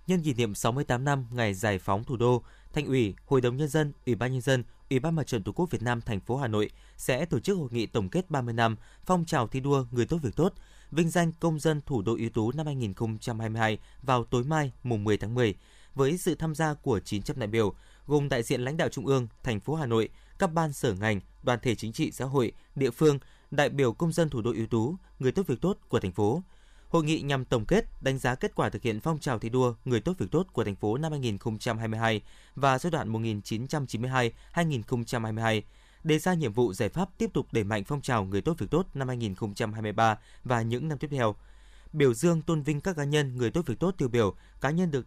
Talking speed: 240 wpm